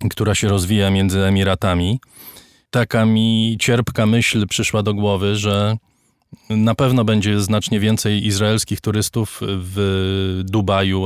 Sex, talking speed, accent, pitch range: male, 120 wpm, native, 95-115 Hz